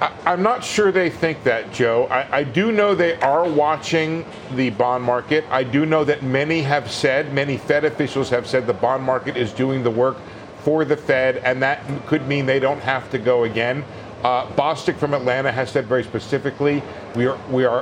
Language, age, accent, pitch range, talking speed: English, 50-69, American, 125-155 Hz, 200 wpm